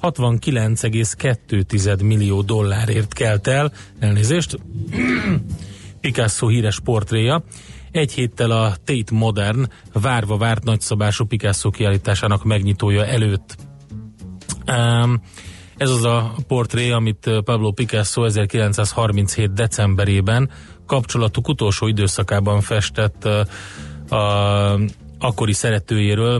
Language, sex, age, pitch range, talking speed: Hungarian, male, 30-49, 100-115 Hz, 85 wpm